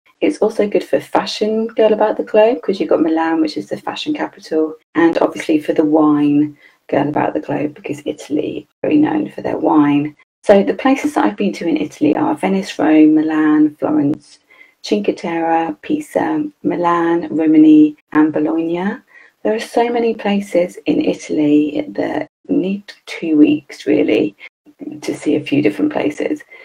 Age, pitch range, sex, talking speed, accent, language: 30-49, 155-250 Hz, female, 170 wpm, British, English